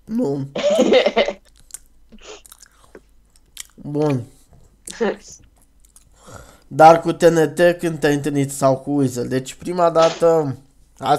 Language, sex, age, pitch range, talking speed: Romanian, male, 20-39, 135-165 Hz, 80 wpm